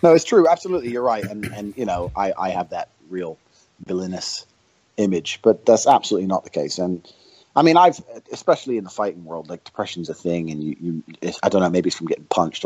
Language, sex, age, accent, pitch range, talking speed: English, male, 30-49, American, 90-125 Hz, 225 wpm